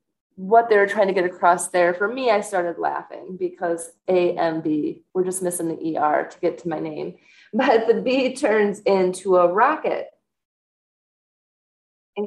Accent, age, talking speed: American, 30-49, 155 wpm